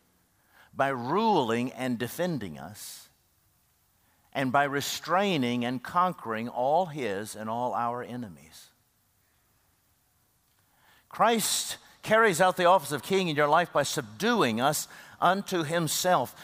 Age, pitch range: 50-69, 120-175 Hz